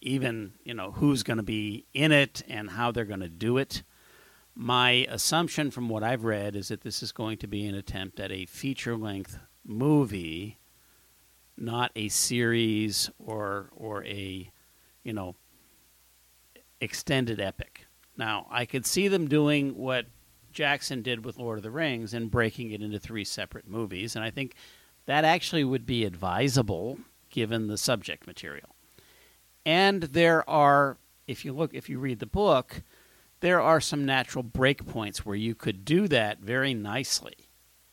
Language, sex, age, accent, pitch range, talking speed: English, male, 50-69, American, 105-135 Hz, 160 wpm